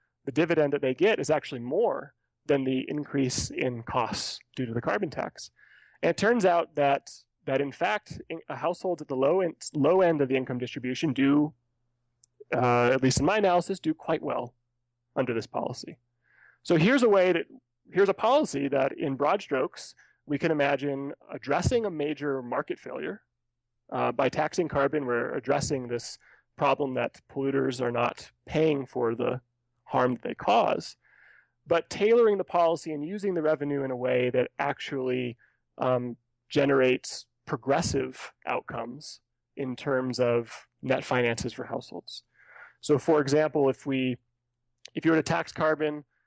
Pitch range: 125-155 Hz